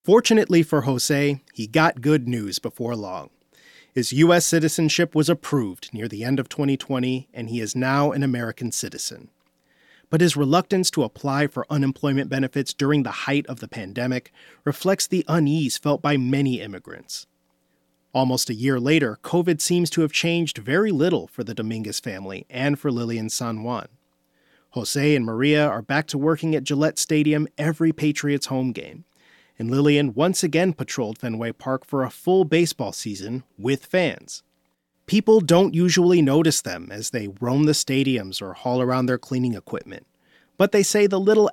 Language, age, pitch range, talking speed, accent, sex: English, 30-49, 120-160 Hz, 170 wpm, American, male